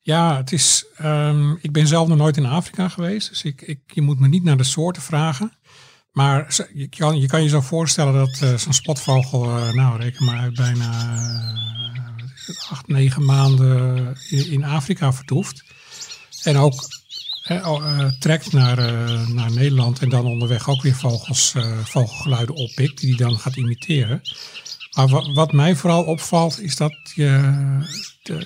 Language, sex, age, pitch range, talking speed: Dutch, male, 50-69, 130-155 Hz, 175 wpm